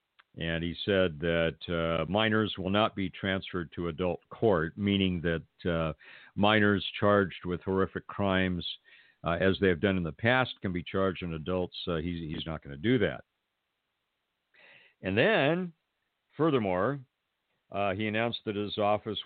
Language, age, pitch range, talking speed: English, 50-69, 90-110 Hz, 160 wpm